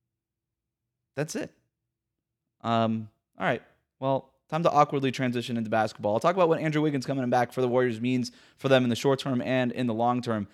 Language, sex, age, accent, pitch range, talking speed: English, male, 20-39, American, 115-140 Hz, 200 wpm